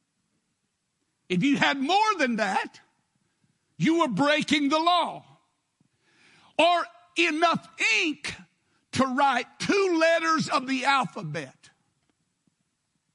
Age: 60-79